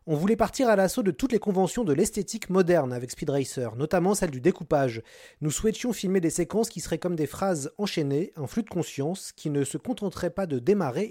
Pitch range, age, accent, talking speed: 145-195 Hz, 30-49, French, 220 wpm